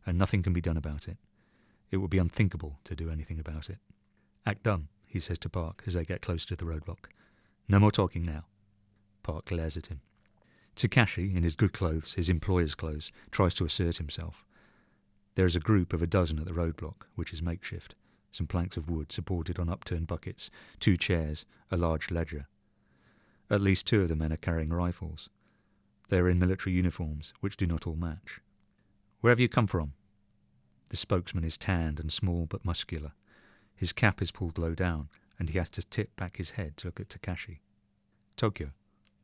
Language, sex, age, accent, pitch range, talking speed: English, male, 40-59, British, 85-100 Hz, 195 wpm